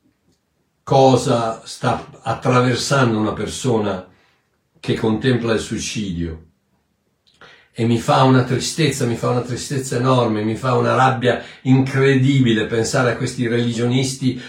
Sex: male